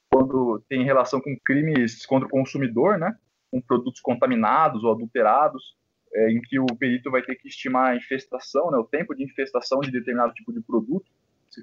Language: Portuguese